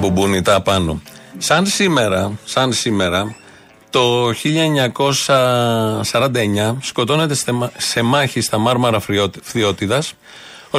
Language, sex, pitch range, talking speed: Greek, male, 110-145 Hz, 90 wpm